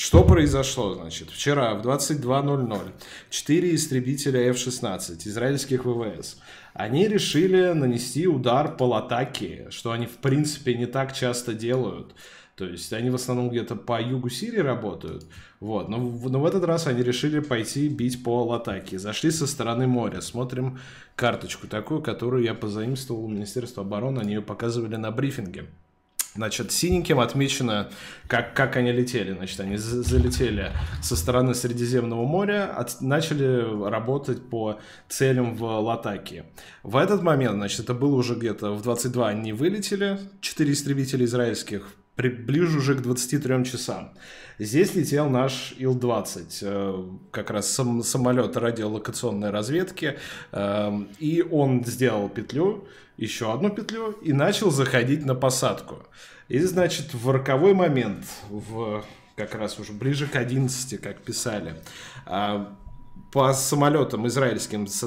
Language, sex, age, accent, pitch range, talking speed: Russian, male, 20-39, native, 110-135 Hz, 135 wpm